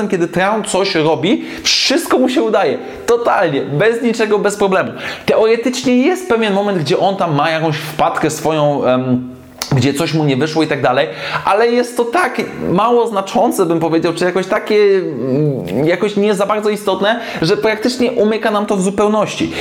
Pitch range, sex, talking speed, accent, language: 165-225 Hz, male, 170 wpm, native, Polish